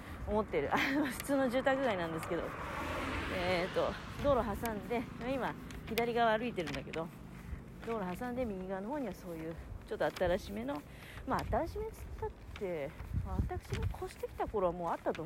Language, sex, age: Japanese, female, 40-59